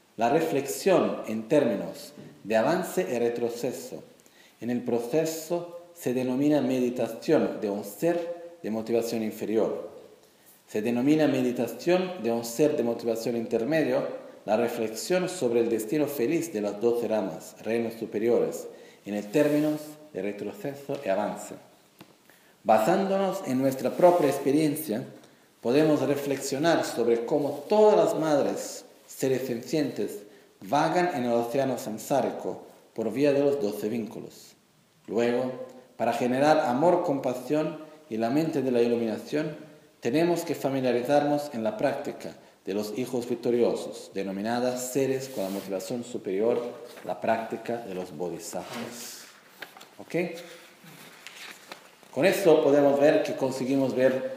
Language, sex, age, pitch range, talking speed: Italian, male, 40-59, 115-155 Hz, 125 wpm